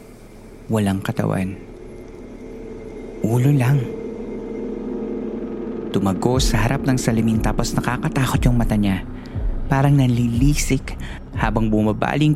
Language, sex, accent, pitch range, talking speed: Filipino, male, native, 100-125 Hz, 85 wpm